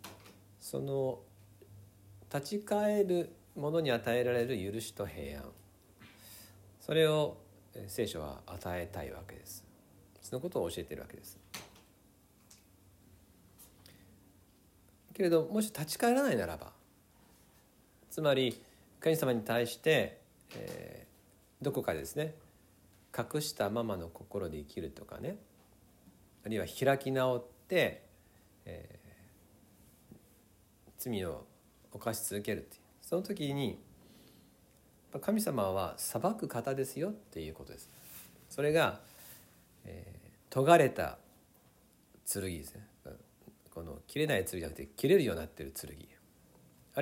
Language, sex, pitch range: Japanese, male, 95-130 Hz